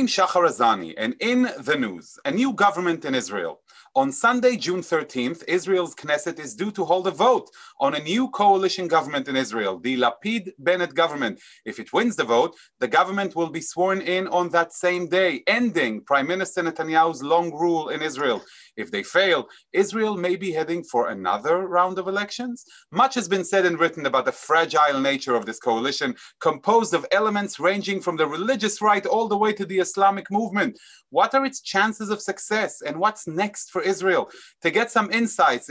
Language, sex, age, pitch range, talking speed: English, male, 30-49, 160-215 Hz, 185 wpm